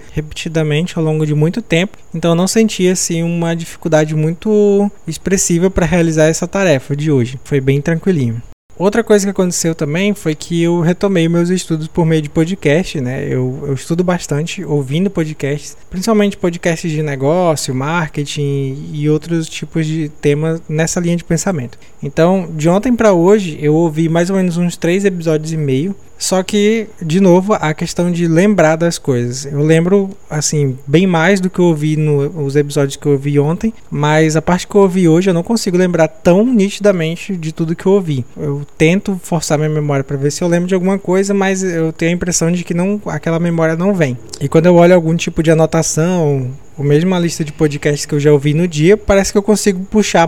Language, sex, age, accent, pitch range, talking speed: Portuguese, male, 20-39, Brazilian, 155-185 Hz, 200 wpm